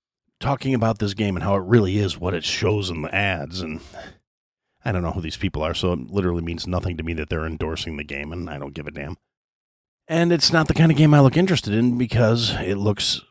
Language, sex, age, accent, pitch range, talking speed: English, male, 40-59, American, 85-115 Hz, 250 wpm